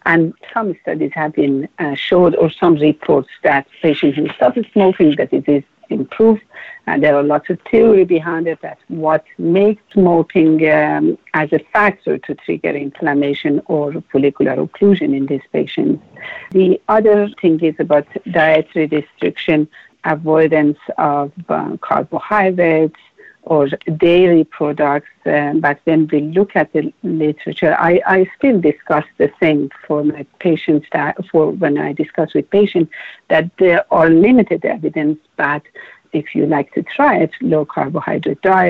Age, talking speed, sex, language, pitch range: 60-79, 150 wpm, female, English, 150-185 Hz